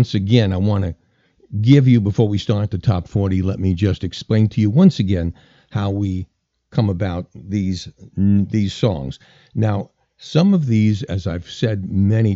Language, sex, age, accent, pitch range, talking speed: English, male, 50-69, American, 95-120 Hz, 175 wpm